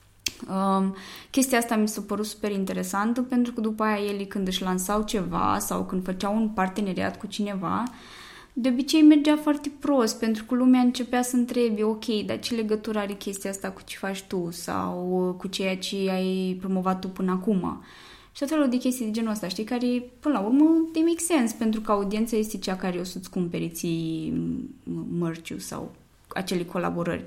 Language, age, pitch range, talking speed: Romanian, 20-39, 180-220 Hz, 185 wpm